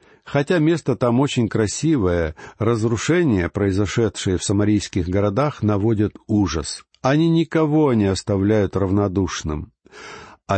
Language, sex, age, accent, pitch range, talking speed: Russian, male, 60-79, native, 100-145 Hz, 100 wpm